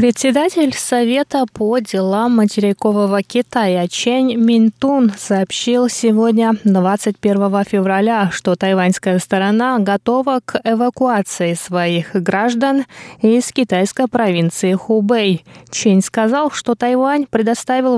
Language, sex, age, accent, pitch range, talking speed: Russian, female, 20-39, native, 190-245 Hz, 95 wpm